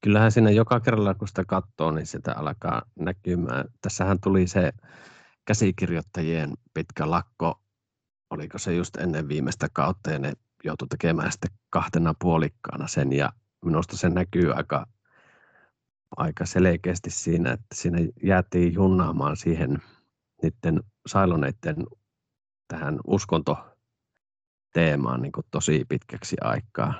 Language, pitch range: Finnish, 85-105 Hz